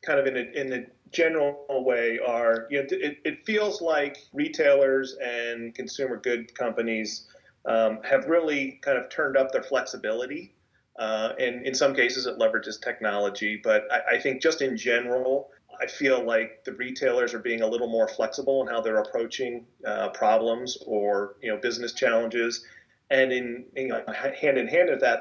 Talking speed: 180 wpm